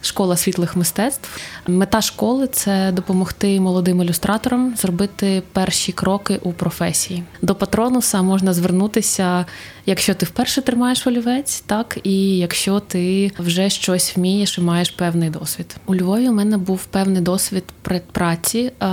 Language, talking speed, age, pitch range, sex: Ukrainian, 135 wpm, 20-39, 180-210 Hz, female